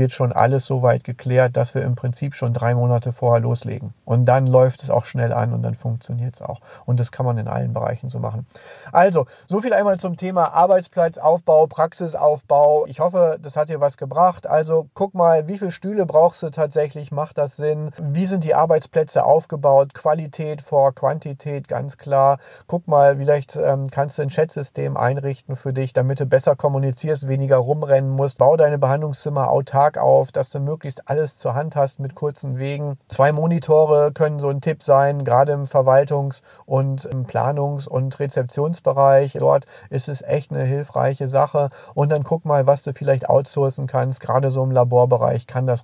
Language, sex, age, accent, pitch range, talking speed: German, male, 40-59, German, 130-150 Hz, 185 wpm